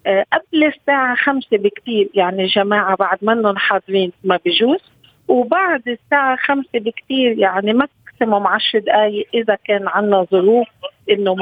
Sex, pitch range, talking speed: female, 205-270 Hz, 135 wpm